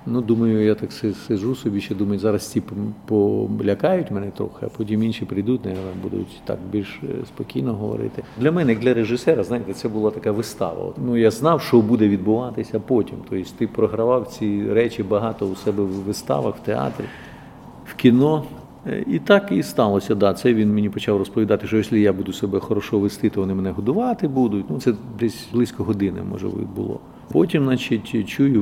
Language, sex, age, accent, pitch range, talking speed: Ukrainian, male, 50-69, native, 100-120 Hz, 180 wpm